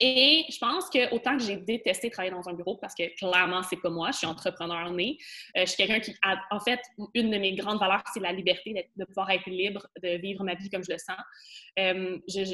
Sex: female